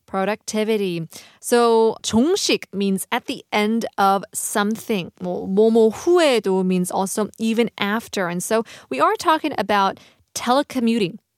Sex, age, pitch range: female, 20-39, 205-280 Hz